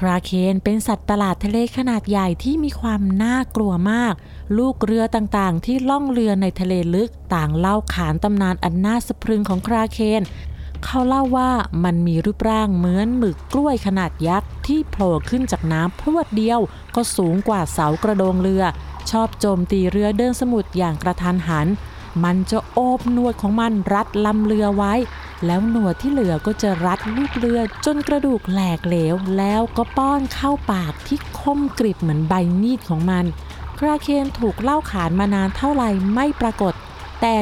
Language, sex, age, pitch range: Thai, female, 20-39, 180-235 Hz